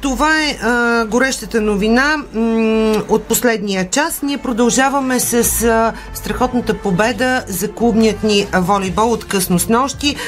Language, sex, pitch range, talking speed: Bulgarian, female, 205-250 Hz, 135 wpm